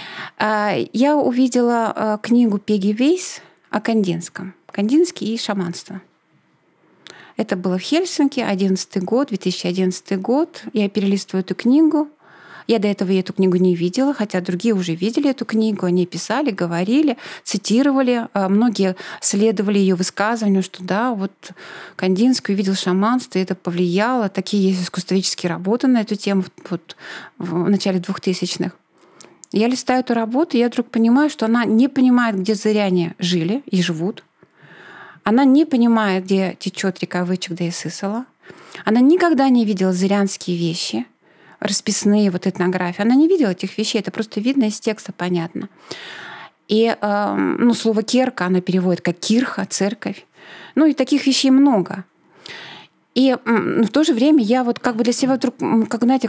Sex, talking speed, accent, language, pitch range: female, 145 wpm, native, Russian, 190-245 Hz